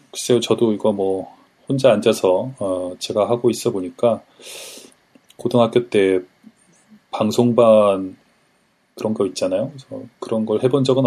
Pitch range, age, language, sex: 95-120 Hz, 20-39, Korean, male